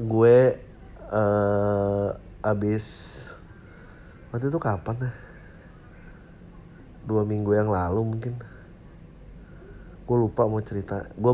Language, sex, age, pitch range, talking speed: Indonesian, male, 30-49, 105-125 Hz, 90 wpm